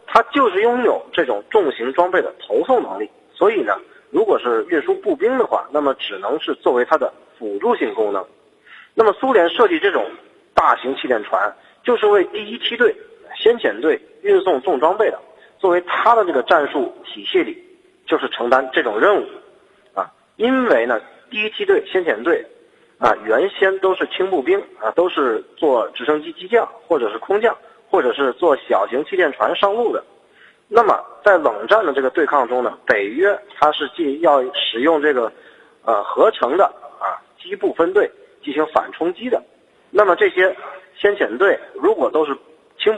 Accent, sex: native, male